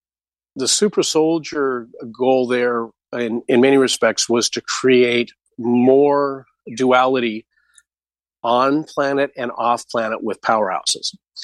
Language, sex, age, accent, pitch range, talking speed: English, male, 40-59, American, 115-140 Hz, 110 wpm